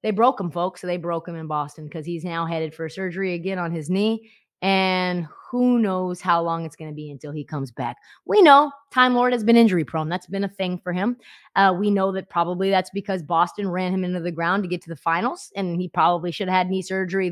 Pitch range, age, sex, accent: 190-275 Hz, 20-39, female, American